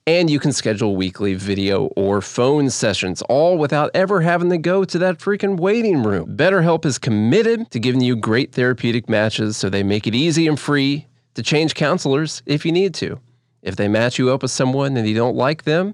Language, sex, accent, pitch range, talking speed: English, male, American, 110-140 Hz, 205 wpm